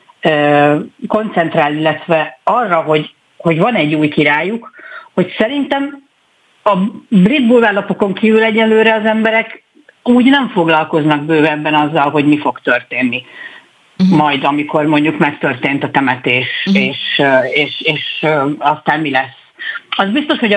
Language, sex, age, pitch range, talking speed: Hungarian, female, 50-69, 150-220 Hz, 125 wpm